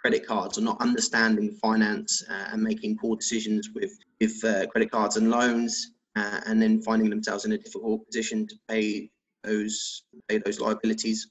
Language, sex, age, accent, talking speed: English, male, 20-39, British, 175 wpm